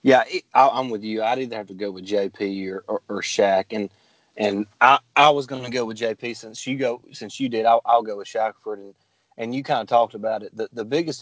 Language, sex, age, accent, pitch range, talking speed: English, male, 30-49, American, 105-125 Hz, 255 wpm